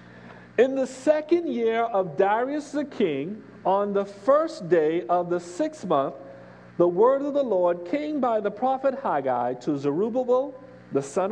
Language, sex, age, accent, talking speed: English, male, 50-69, American, 160 wpm